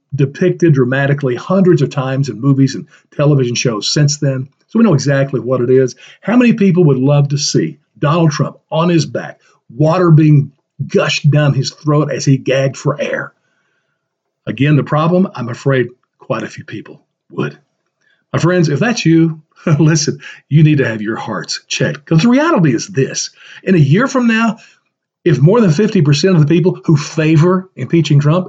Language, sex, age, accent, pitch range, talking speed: English, male, 50-69, American, 140-185 Hz, 180 wpm